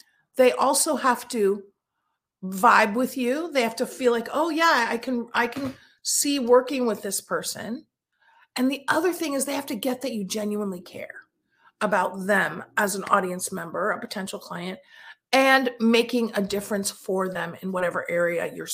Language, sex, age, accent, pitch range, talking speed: English, female, 40-59, American, 215-290 Hz, 175 wpm